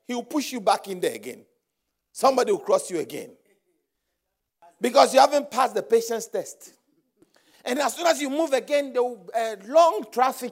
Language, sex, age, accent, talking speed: English, male, 50-69, Nigerian, 175 wpm